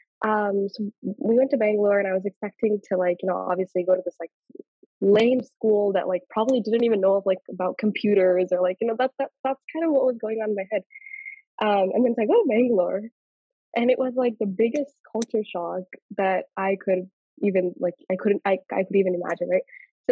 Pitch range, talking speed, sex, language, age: 190-265 Hz, 225 wpm, female, Telugu, 20-39